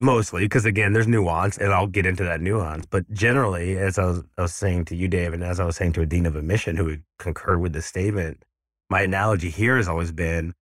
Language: English